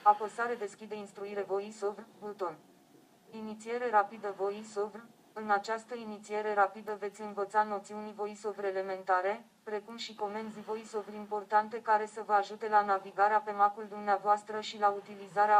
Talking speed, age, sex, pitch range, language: 135 wpm, 20-39, female, 205-215 Hz, Romanian